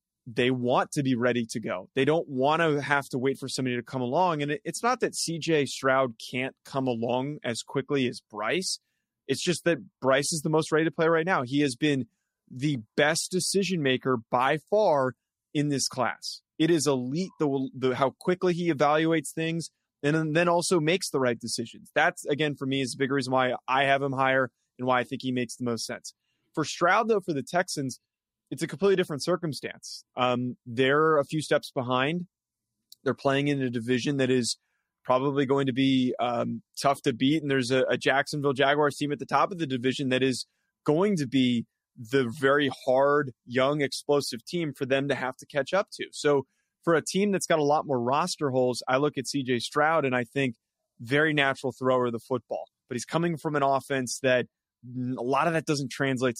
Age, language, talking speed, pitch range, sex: 20-39, English, 210 wpm, 125-155 Hz, male